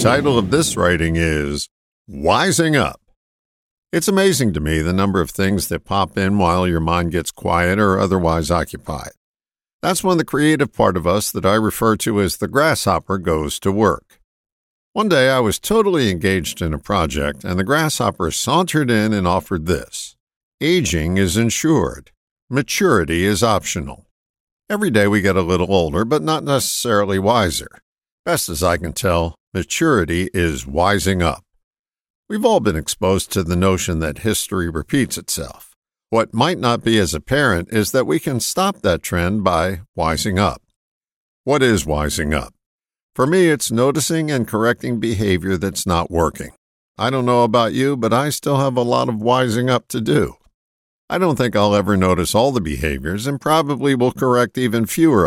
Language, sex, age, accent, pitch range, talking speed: English, male, 50-69, American, 85-125 Hz, 170 wpm